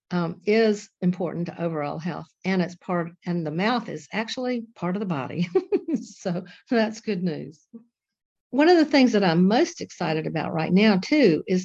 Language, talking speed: English, 180 wpm